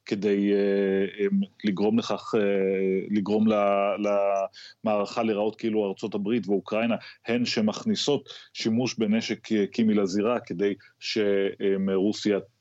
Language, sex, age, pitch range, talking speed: Hebrew, male, 30-49, 100-110 Hz, 85 wpm